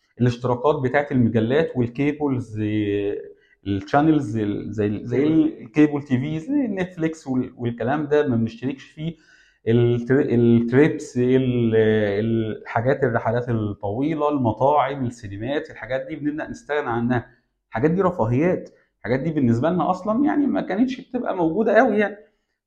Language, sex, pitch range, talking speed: Arabic, male, 115-180 Hz, 115 wpm